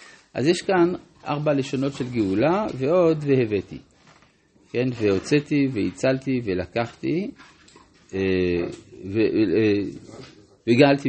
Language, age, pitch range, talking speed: Hebrew, 50-69, 100-145 Hz, 75 wpm